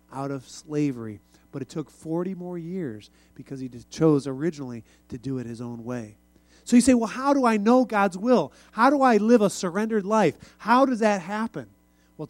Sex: male